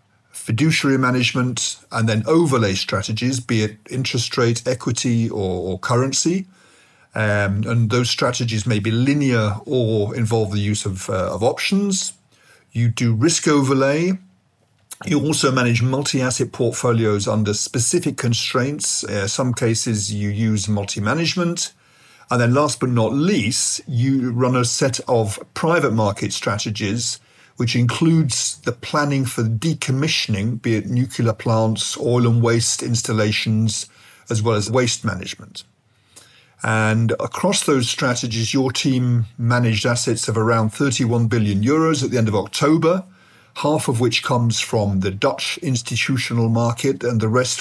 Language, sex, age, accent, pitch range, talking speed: English, male, 50-69, British, 110-130 Hz, 140 wpm